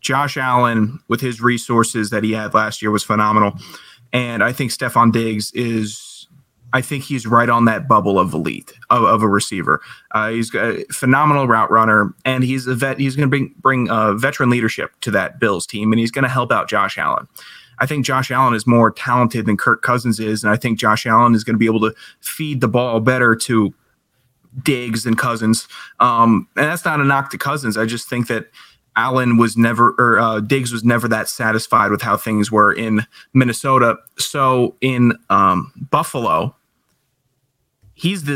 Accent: American